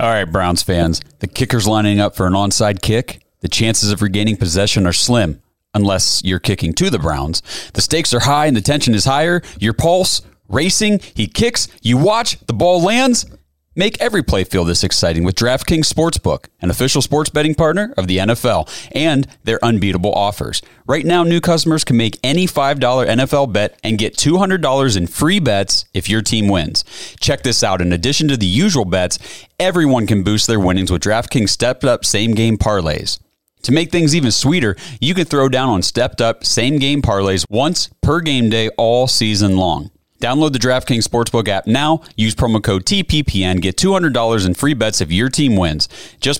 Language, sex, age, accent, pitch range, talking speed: English, male, 30-49, American, 100-140 Hz, 185 wpm